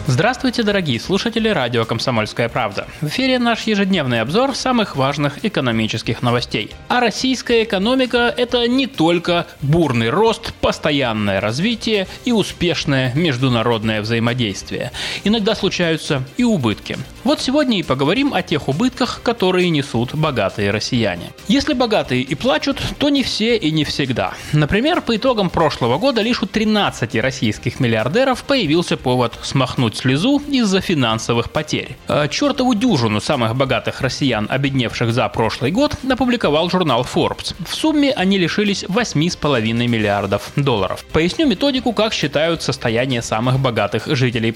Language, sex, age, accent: Russian, male, 20-39, native